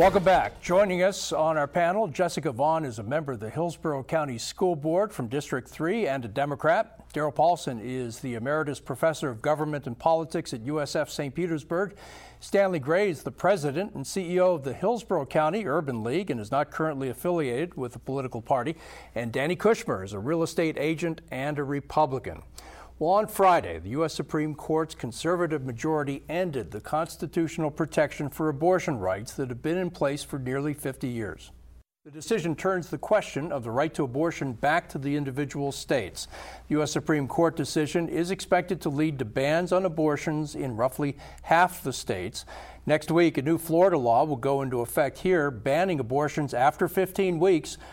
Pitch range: 135-170 Hz